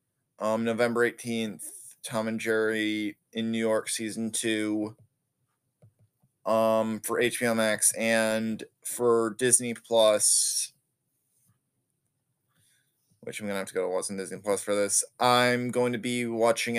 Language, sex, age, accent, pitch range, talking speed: English, male, 20-39, American, 110-135 Hz, 130 wpm